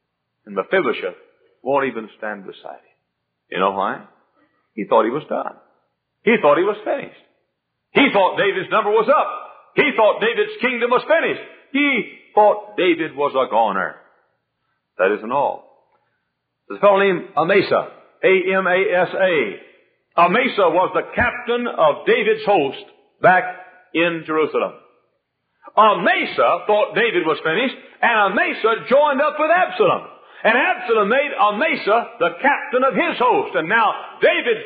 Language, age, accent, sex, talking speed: English, 60-79, American, male, 140 wpm